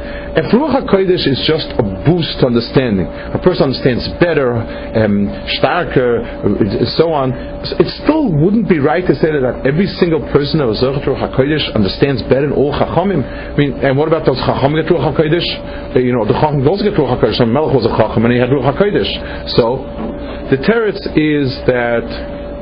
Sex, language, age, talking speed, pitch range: male, English, 50-69, 195 wpm, 125-170 Hz